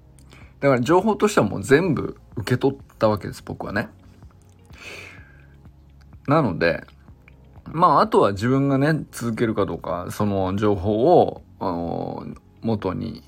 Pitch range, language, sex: 85-135 Hz, Japanese, male